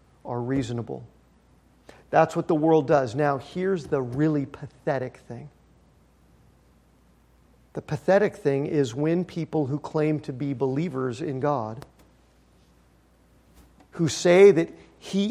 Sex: male